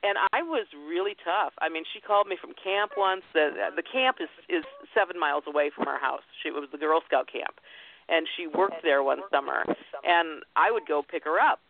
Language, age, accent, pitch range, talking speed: English, 50-69, American, 150-245 Hz, 230 wpm